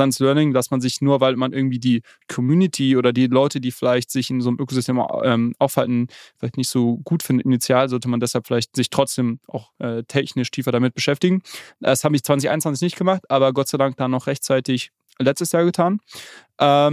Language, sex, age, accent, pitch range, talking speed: German, male, 20-39, German, 130-150 Hz, 200 wpm